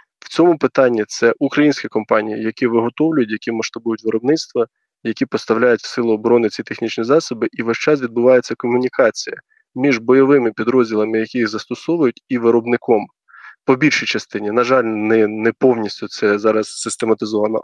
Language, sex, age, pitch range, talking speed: Ukrainian, male, 20-39, 110-130 Hz, 145 wpm